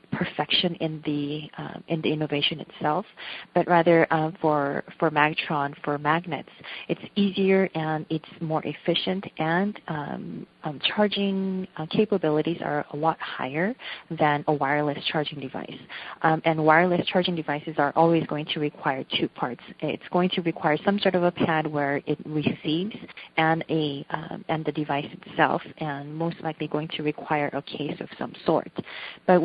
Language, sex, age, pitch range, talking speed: English, female, 30-49, 150-175 Hz, 165 wpm